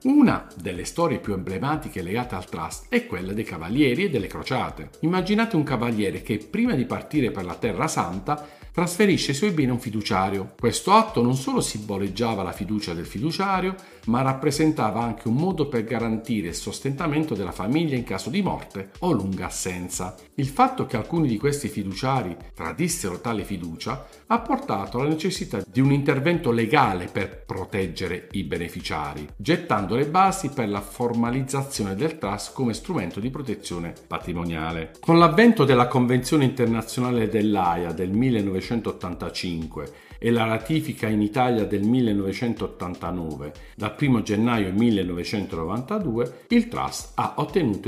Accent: native